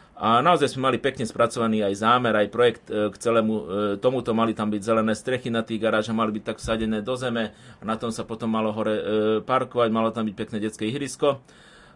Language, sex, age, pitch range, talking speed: Slovak, male, 30-49, 110-130 Hz, 205 wpm